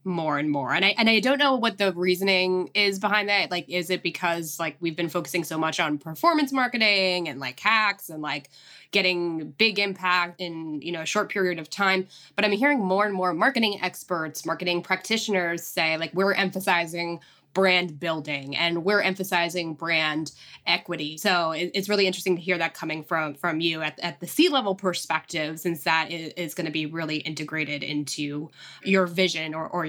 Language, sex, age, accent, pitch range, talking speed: English, female, 20-39, American, 165-205 Hz, 190 wpm